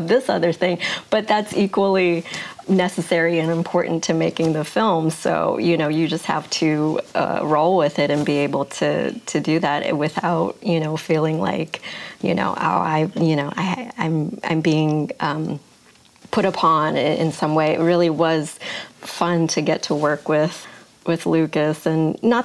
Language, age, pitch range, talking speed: English, 30-49, 150-170 Hz, 175 wpm